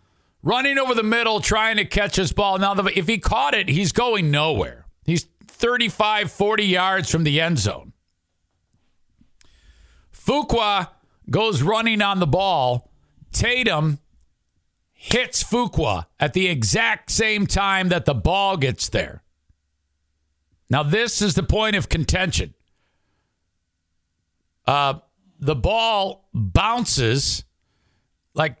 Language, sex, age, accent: English, male, 50-69, American